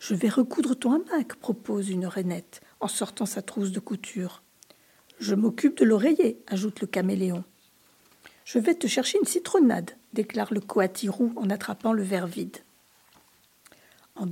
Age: 50-69